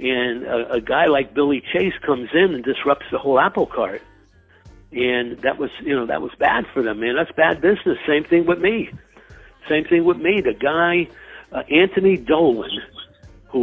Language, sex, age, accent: English, male, 60-79, American